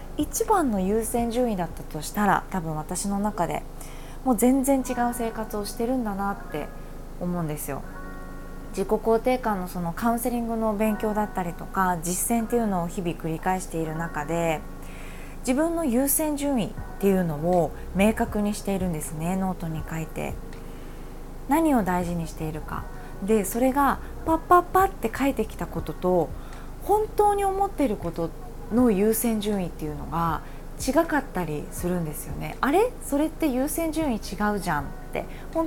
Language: Japanese